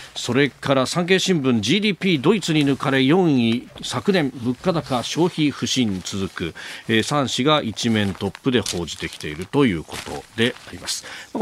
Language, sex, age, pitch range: Japanese, male, 40-59, 100-165 Hz